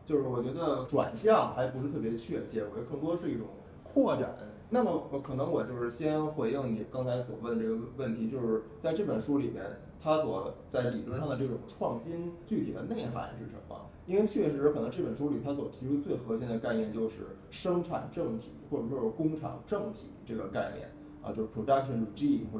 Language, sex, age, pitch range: Chinese, male, 20-39, 115-175 Hz